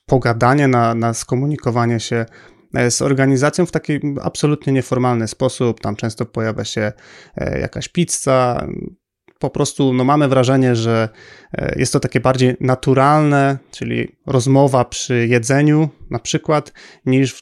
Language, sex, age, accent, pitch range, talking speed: Polish, male, 30-49, native, 120-140 Hz, 120 wpm